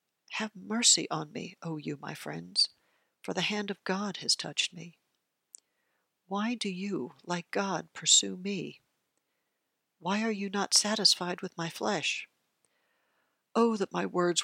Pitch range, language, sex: 175-210 Hz, English, female